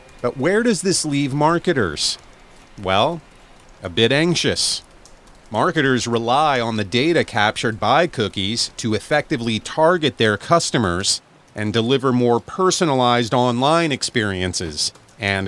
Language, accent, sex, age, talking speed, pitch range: English, American, male, 40-59, 115 wpm, 105-135 Hz